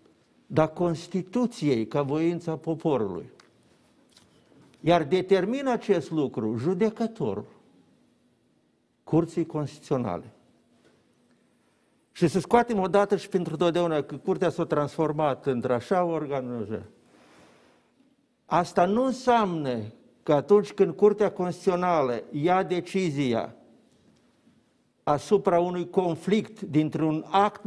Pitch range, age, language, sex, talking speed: 155-195 Hz, 50-69, Romanian, male, 90 wpm